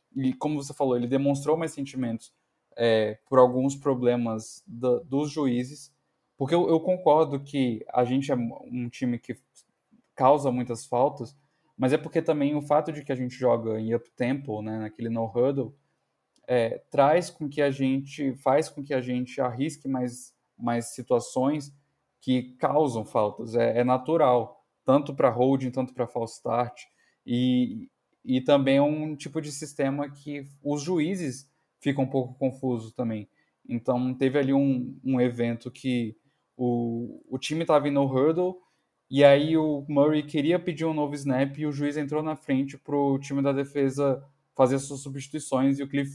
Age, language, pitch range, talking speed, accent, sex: 10-29, Portuguese, 125-145 Hz, 170 wpm, Brazilian, male